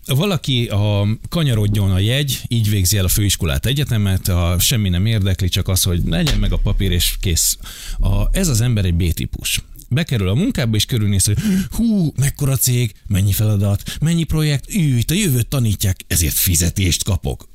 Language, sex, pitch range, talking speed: Hungarian, male, 95-120 Hz, 170 wpm